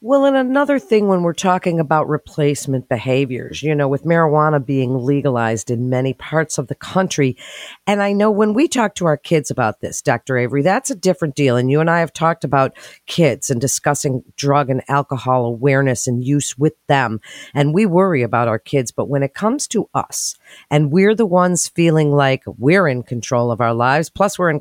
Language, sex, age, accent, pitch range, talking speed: English, female, 50-69, American, 130-170 Hz, 205 wpm